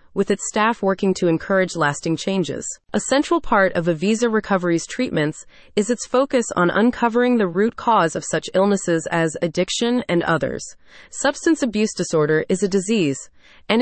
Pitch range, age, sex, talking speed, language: 170-225 Hz, 30-49, female, 160 wpm, English